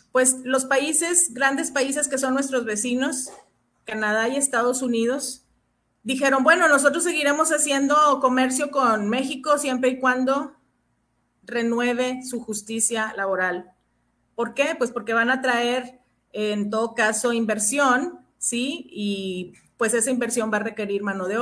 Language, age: Spanish, 40-59